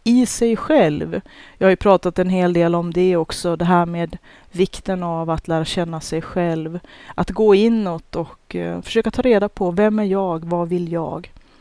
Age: 30-49